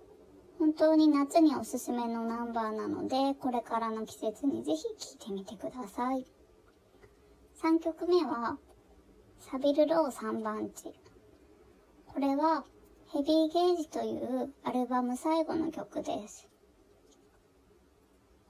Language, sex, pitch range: Japanese, male, 235-320 Hz